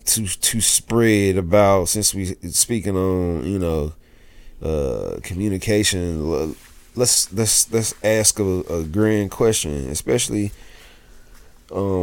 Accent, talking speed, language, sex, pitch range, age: American, 110 wpm, English, male, 85-125 Hz, 20-39